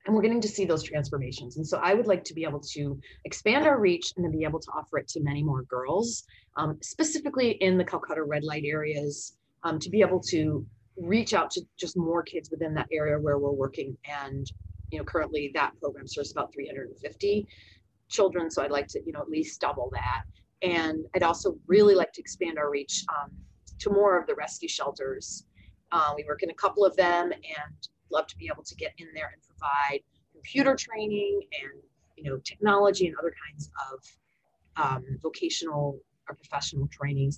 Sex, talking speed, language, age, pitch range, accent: female, 200 wpm, English, 30-49, 135-175 Hz, American